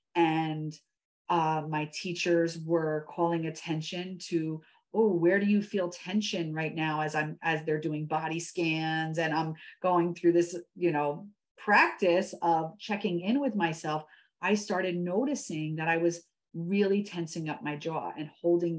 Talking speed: 155 wpm